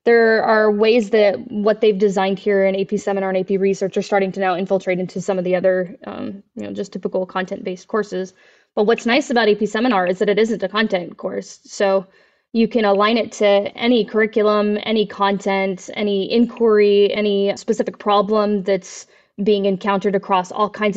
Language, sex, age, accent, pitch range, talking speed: English, female, 20-39, American, 195-225 Hz, 185 wpm